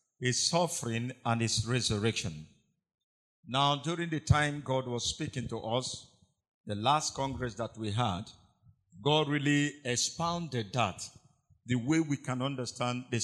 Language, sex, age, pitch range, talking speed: English, male, 50-69, 115-150 Hz, 135 wpm